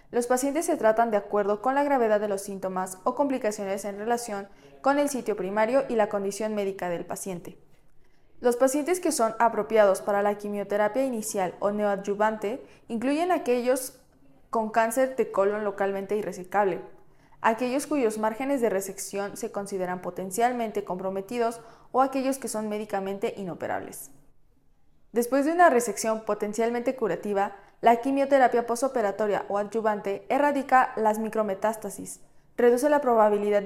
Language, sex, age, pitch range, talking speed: Spanish, female, 20-39, 200-250 Hz, 135 wpm